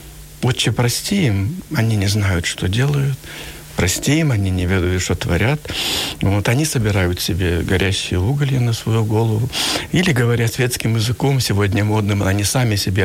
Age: 70-89